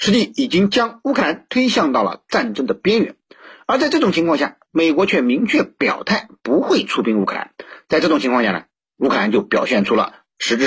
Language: Chinese